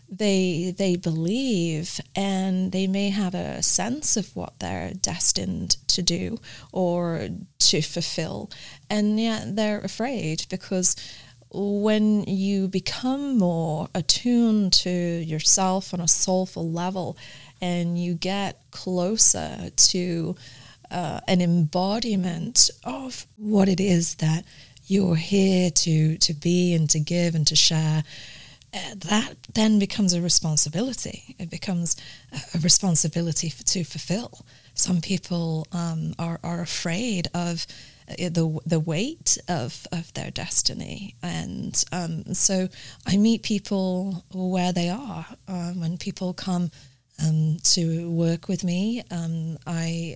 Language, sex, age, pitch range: English, female, 30-49, 160-190 Hz